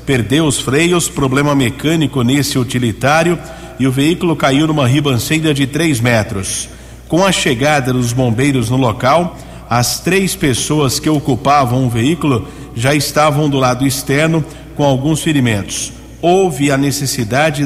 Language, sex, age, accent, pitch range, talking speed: Portuguese, male, 50-69, Brazilian, 125-155 Hz, 140 wpm